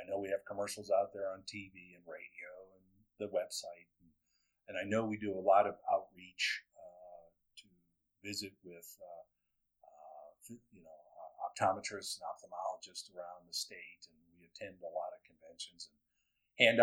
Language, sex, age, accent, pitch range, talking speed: English, male, 50-69, American, 90-105 Hz, 170 wpm